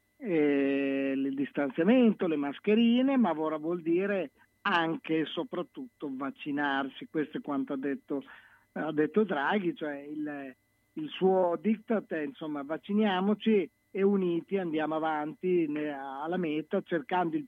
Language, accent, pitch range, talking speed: Italian, native, 145-180 Hz, 125 wpm